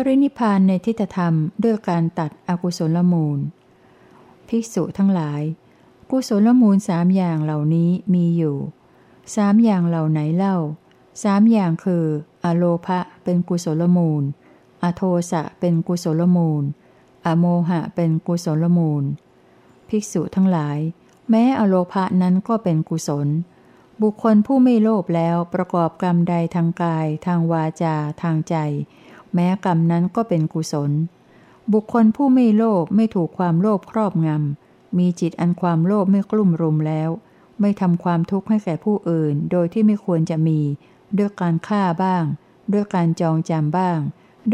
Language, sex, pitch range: Thai, female, 160-195 Hz